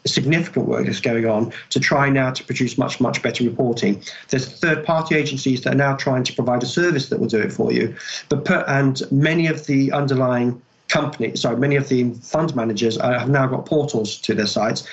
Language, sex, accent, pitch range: English, male, British, 125-150 Hz